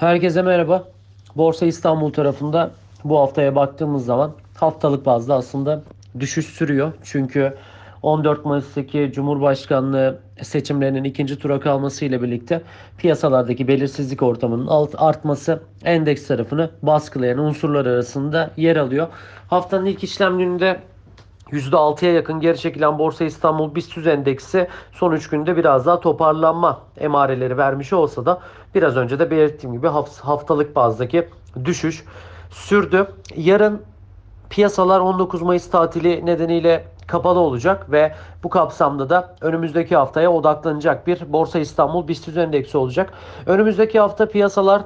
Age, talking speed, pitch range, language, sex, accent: 40-59, 120 wpm, 135-175 Hz, Turkish, male, native